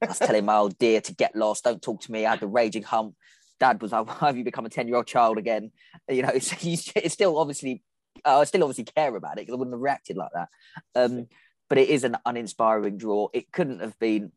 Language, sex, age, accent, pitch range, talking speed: English, male, 20-39, British, 110-140 Hz, 260 wpm